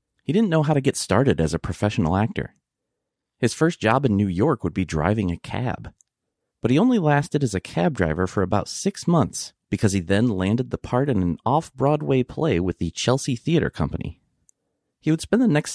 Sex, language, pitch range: male, English, 90-135 Hz